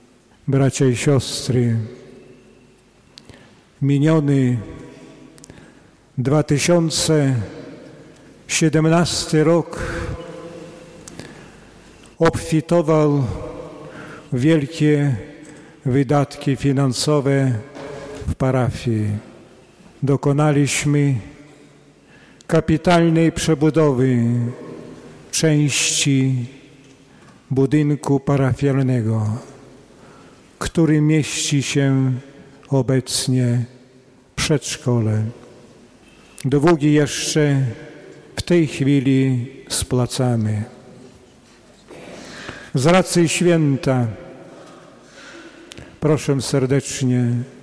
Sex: male